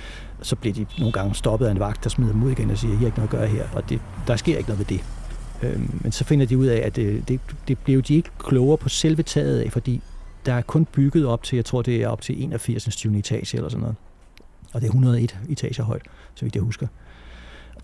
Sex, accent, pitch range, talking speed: male, native, 115-140 Hz, 270 wpm